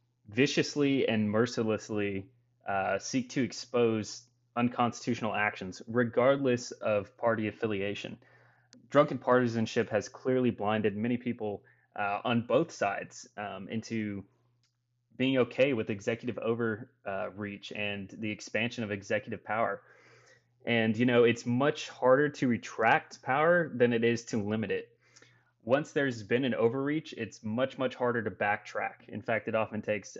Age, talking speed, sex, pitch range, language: 20-39, 135 wpm, male, 105-125 Hz, English